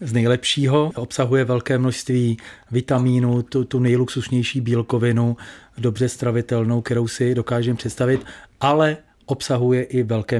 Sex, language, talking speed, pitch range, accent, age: male, Czech, 115 wpm, 115-125 Hz, native, 40-59